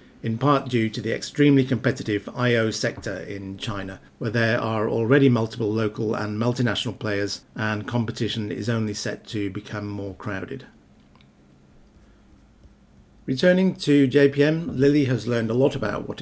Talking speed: 145 wpm